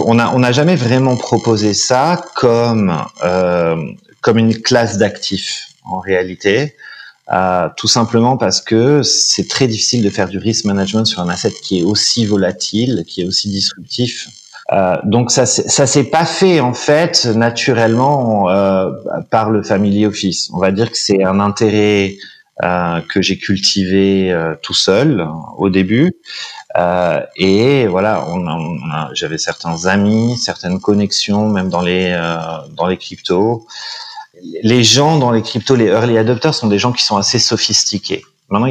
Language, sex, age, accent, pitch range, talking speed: French, male, 30-49, French, 100-125 Hz, 165 wpm